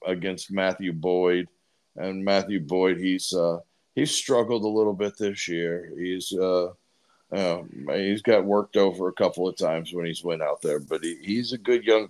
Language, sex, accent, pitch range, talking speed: English, male, American, 90-105 Hz, 195 wpm